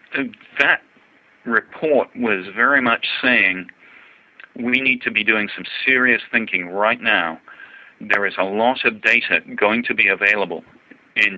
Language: English